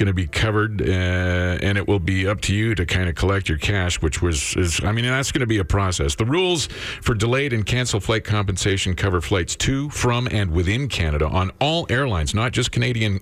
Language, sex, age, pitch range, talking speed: English, male, 50-69, 90-120 Hz, 225 wpm